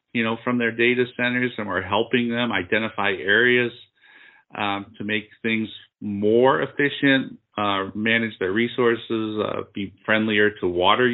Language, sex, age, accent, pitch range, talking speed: English, male, 40-59, American, 105-120 Hz, 145 wpm